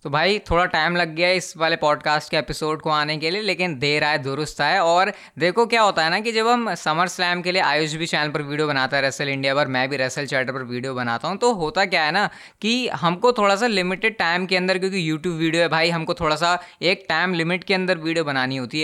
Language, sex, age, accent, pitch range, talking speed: Hindi, female, 20-39, native, 155-190 Hz, 260 wpm